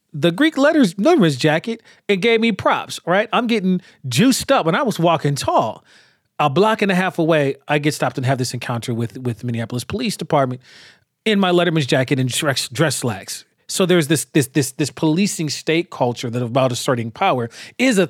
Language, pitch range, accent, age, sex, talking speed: English, 135-180 Hz, American, 40-59, male, 205 wpm